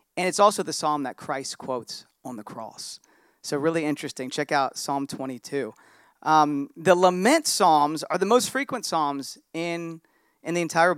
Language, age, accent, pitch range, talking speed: English, 40-59, American, 145-205 Hz, 170 wpm